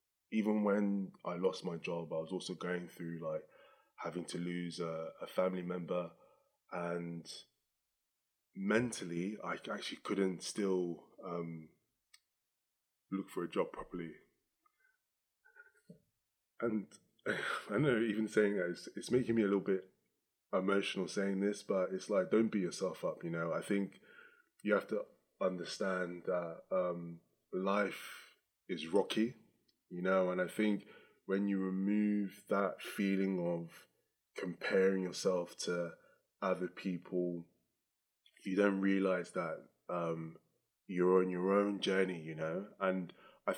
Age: 20-39